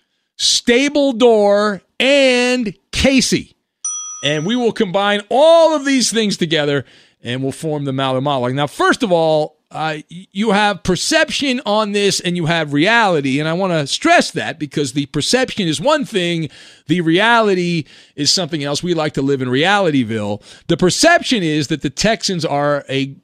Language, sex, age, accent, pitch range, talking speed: English, male, 40-59, American, 145-215 Hz, 165 wpm